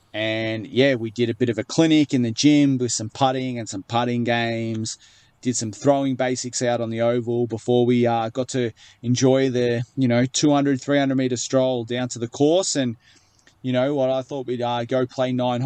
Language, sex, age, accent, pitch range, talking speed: English, male, 20-39, Australian, 115-130 Hz, 210 wpm